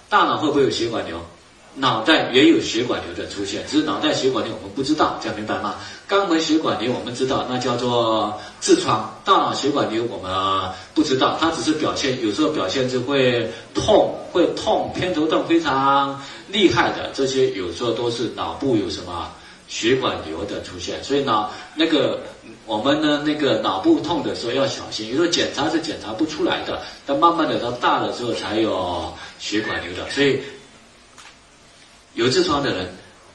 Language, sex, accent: Chinese, male, native